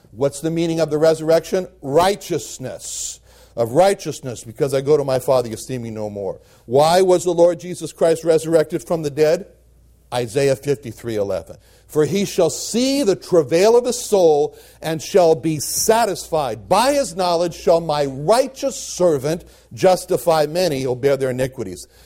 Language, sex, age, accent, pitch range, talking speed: English, male, 60-79, American, 135-185 Hz, 160 wpm